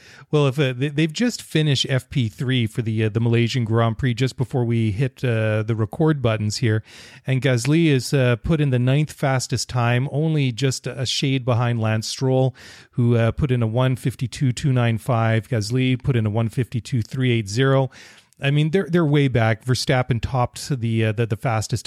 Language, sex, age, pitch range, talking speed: English, male, 30-49, 120-145 Hz, 180 wpm